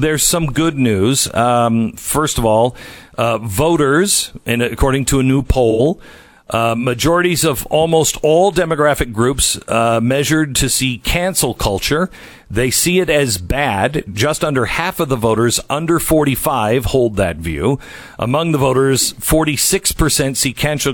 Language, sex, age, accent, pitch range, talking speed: English, male, 50-69, American, 115-160 Hz, 150 wpm